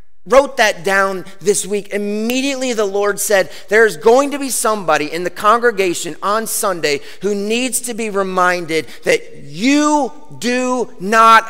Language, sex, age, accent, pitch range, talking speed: English, male, 30-49, American, 175-260 Hz, 145 wpm